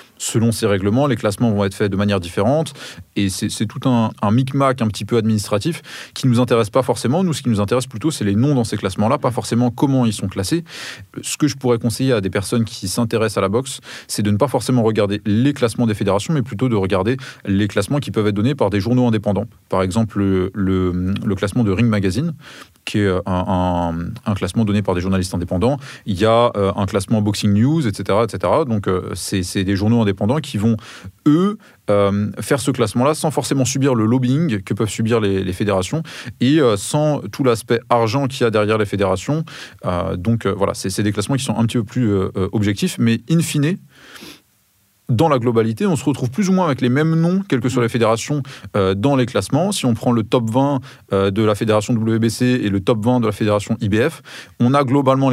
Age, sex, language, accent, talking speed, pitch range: 20-39, male, French, French, 225 wpm, 100-130 Hz